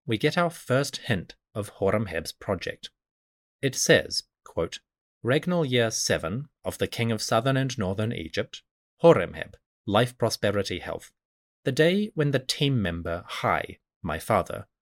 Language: English